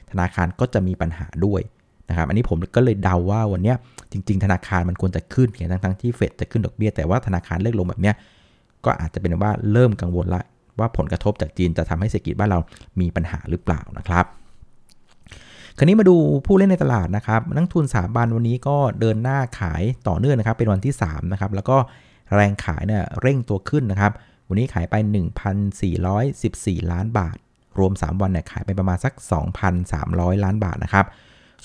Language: Thai